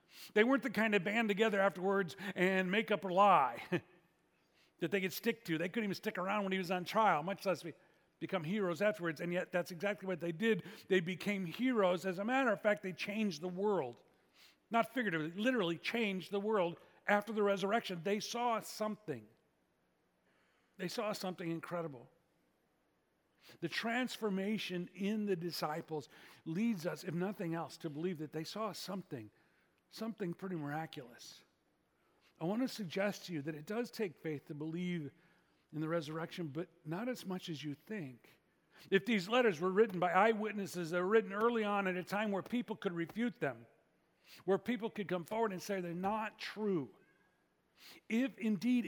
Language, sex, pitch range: English, male, 170-215 Hz